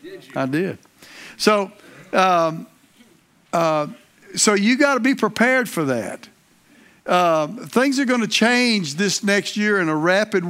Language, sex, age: English, male, 60-79